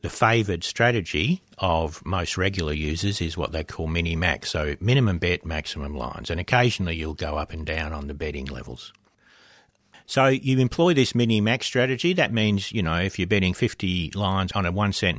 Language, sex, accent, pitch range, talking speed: English, male, Australian, 85-120 Hz, 195 wpm